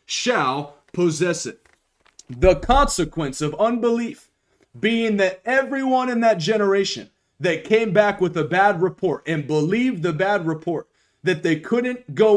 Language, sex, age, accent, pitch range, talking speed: English, male, 30-49, American, 155-225 Hz, 140 wpm